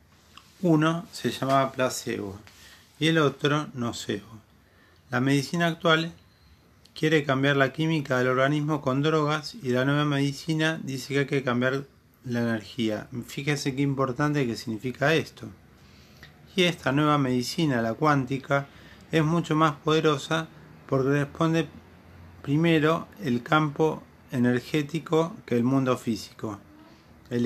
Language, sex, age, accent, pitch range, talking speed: Spanish, male, 40-59, Argentinian, 115-150 Hz, 125 wpm